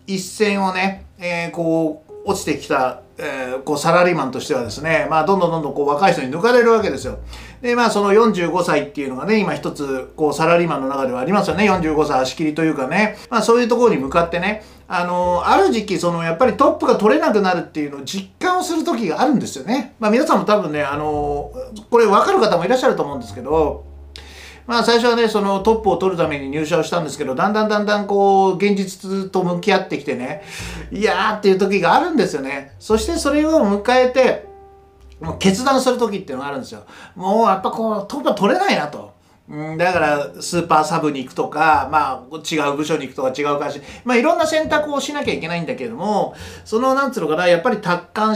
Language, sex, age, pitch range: Japanese, male, 40-59, 155-220 Hz